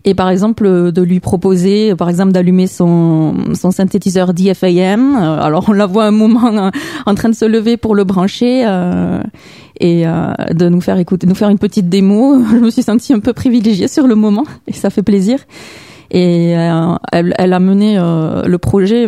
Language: French